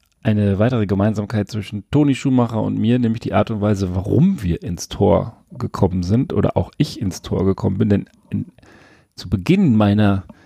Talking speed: 170 wpm